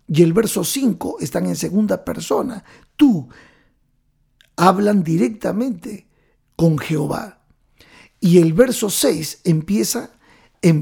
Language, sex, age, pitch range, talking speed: Spanish, male, 50-69, 165-225 Hz, 105 wpm